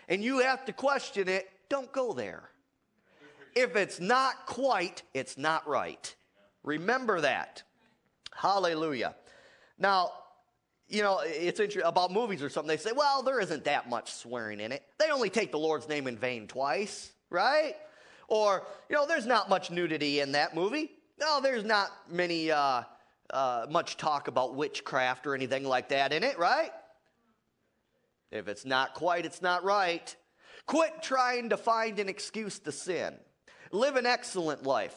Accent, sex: American, male